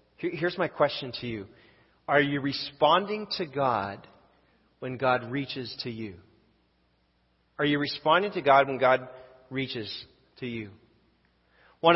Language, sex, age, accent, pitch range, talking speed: English, male, 40-59, American, 120-150 Hz, 130 wpm